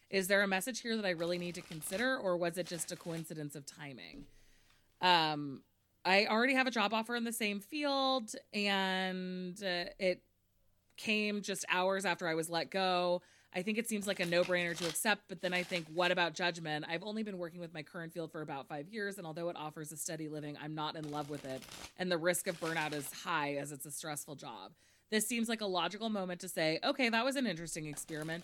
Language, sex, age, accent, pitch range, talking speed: English, female, 20-39, American, 150-190 Hz, 230 wpm